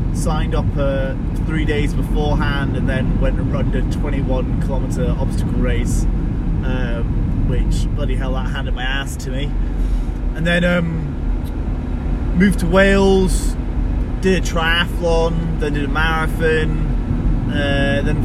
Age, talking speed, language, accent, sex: 20-39, 135 wpm, English, British, male